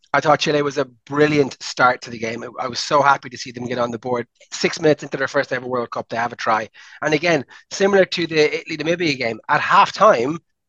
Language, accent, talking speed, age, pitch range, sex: English, Irish, 240 wpm, 30-49, 120-150 Hz, male